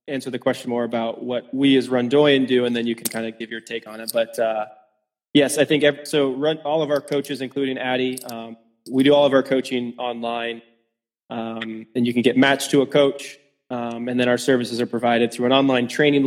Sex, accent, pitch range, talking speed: male, American, 120-140 Hz, 230 wpm